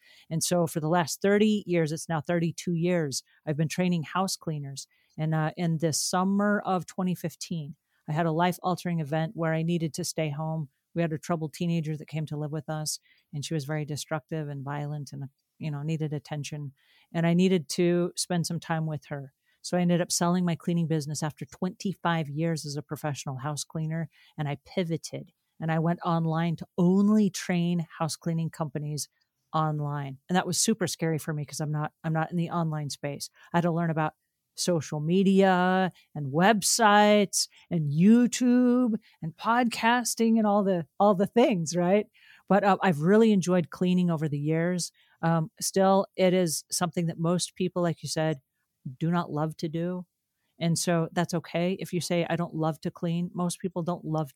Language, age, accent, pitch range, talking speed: English, 40-59, American, 155-180 Hz, 190 wpm